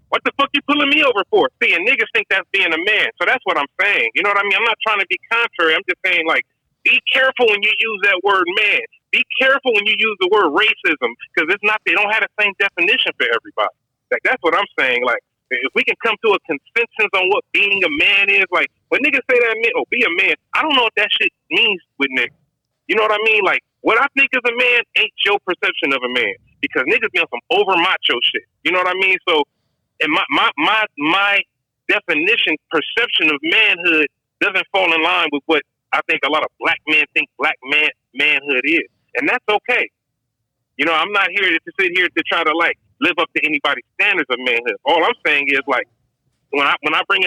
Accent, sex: American, male